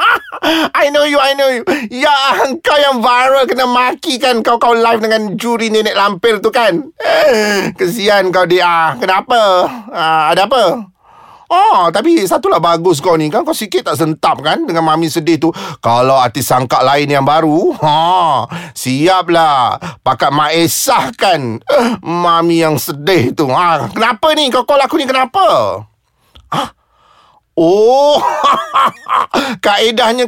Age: 30-49